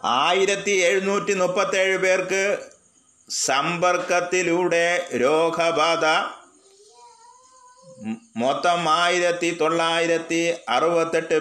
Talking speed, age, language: 60 wpm, 30-49, Malayalam